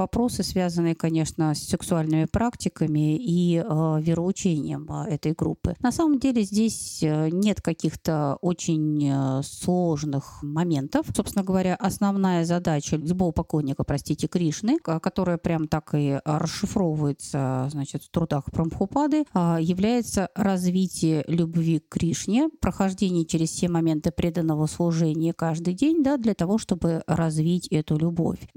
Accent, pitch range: native, 160-200 Hz